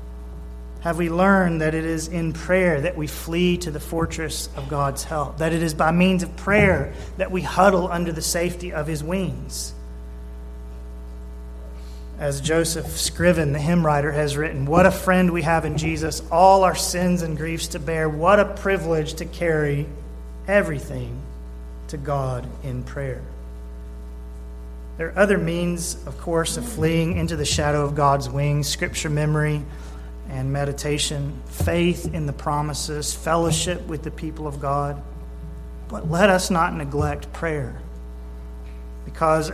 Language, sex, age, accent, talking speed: English, male, 30-49, American, 150 wpm